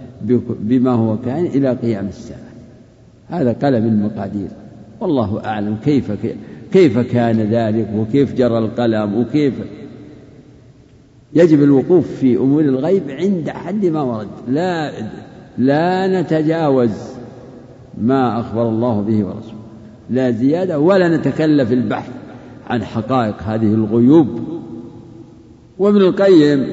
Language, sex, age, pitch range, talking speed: Arabic, male, 60-79, 120-145 Hz, 105 wpm